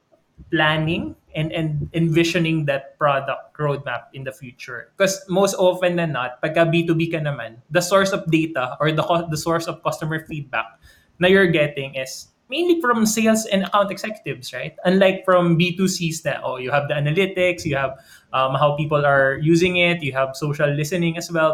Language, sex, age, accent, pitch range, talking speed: Filipino, male, 20-39, native, 150-180 Hz, 180 wpm